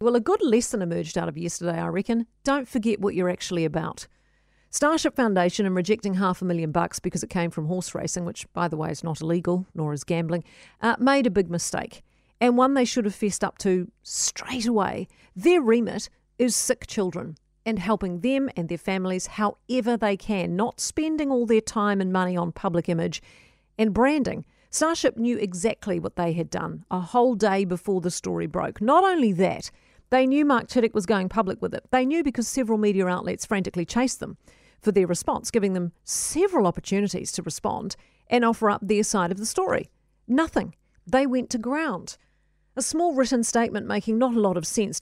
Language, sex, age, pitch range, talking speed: English, female, 50-69, 185-255 Hz, 195 wpm